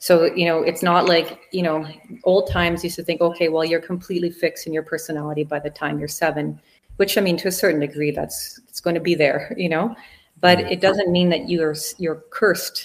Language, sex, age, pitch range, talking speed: English, female, 30-49, 150-175 Hz, 230 wpm